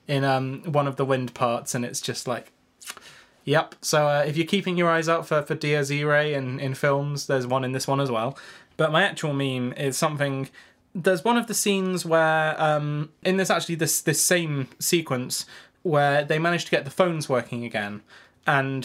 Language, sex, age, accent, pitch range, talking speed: English, male, 20-39, British, 130-165 Hz, 205 wpm